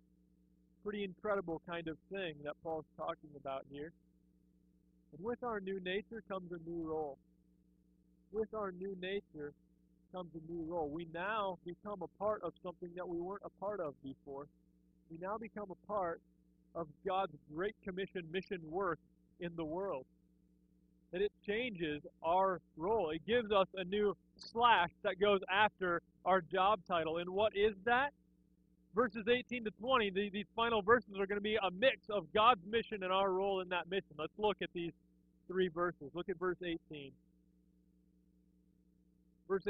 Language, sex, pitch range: English, male, 145-215 Hz